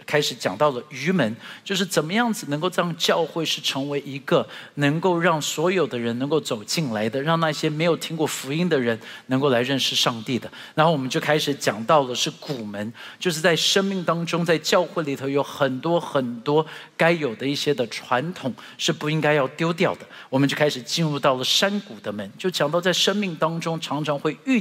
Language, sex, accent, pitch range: Chinese, male, native, 140-185 Hz